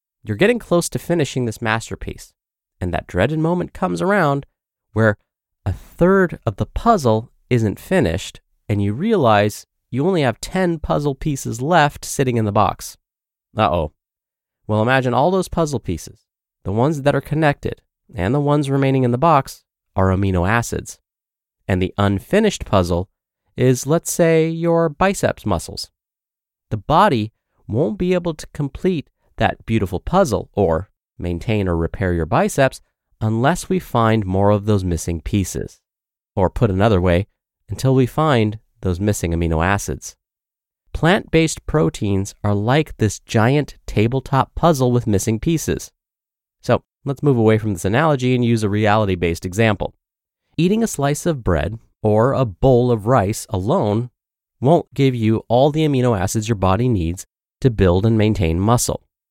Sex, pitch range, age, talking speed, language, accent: male, 100-145 Hz, 30-49, 155 wpm, English, American